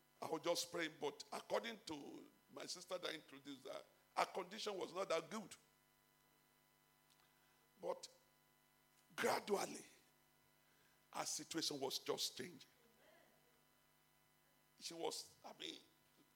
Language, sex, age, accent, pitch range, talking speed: English, male, 50-69, Nigerian, 165-255 Hz, 105 wpm